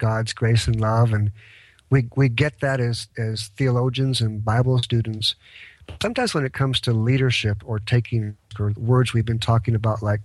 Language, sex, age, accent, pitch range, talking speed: English, male, 50-69, American, 110-140 Hz, 175 wpm